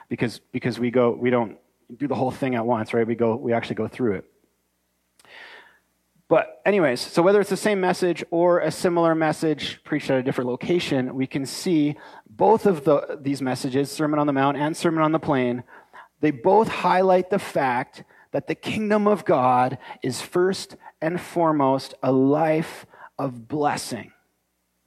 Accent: American